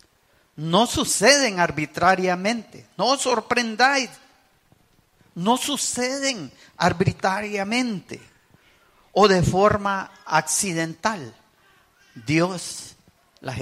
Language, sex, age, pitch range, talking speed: English, male, 50-69, 140-205 Hz, 65 wpm